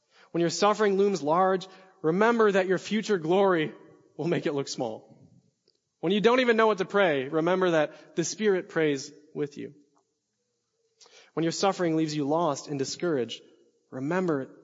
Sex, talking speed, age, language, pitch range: male, 160 wpm, 20-39, English, 130-170 Hz